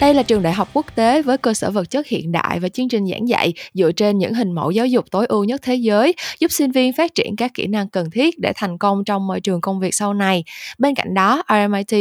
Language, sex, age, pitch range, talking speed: Vietnamese, female, 20-39, 185-245 Hz, 275 wpm